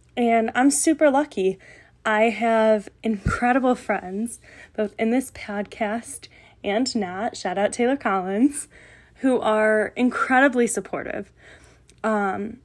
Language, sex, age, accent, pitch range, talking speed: English, female, 10-29, American, 205-235 Hz, 110 wpm